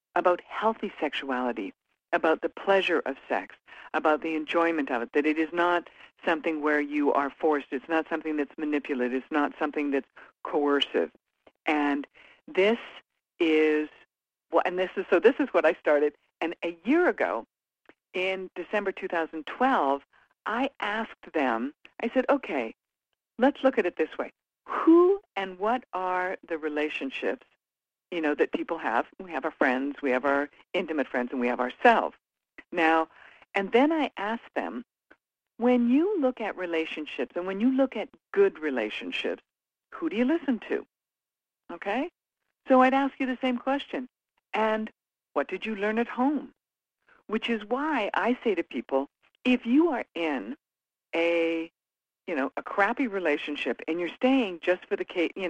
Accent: American